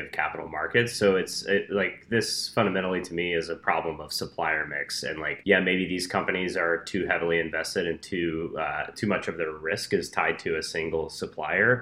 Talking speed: 205 wpm